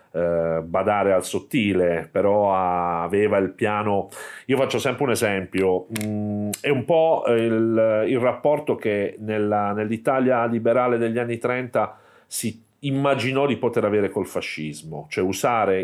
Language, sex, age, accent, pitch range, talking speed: Italian, male, 40-59, native, 95-115 Hz, 130 wpm